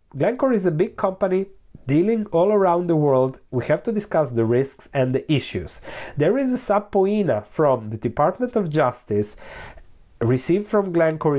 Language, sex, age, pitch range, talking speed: English, male, 30-49, 125-185 Hz, 165 wpm